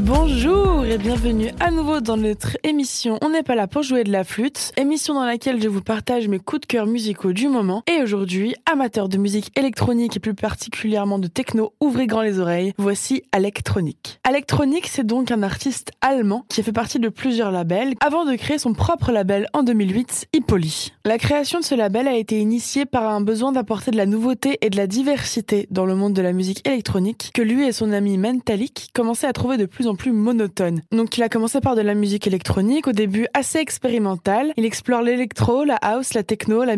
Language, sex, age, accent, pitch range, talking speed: French, female, 20-39, French, 205-260 Hz, 215 wpm